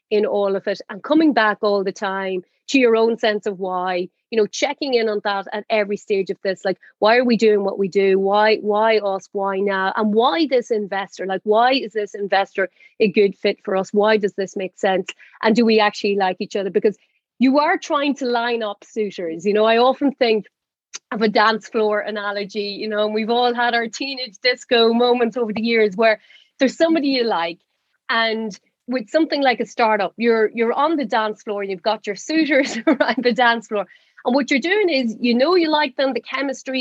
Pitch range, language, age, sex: 200-245 Hz, English, 30-49, female